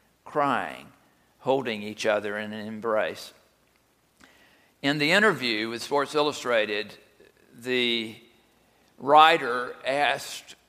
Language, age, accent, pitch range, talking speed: English, 50-69, American, 125-155 Hz, 90 wpm